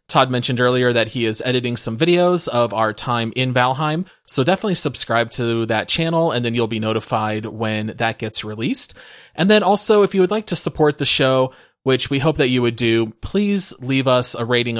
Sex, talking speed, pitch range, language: male, 210 wpm, 115-145 Hz, English